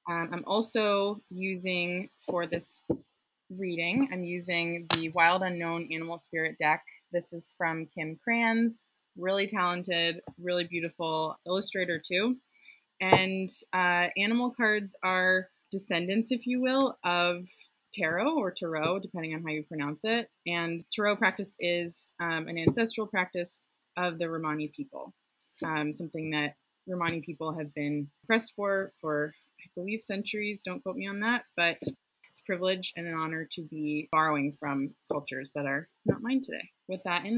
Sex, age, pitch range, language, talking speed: female, 20-39, 165-205 Hz, English, 155 wpm